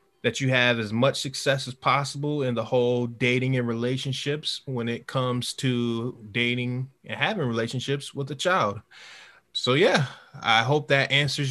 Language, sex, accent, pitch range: English, male, American, 115-140 Hz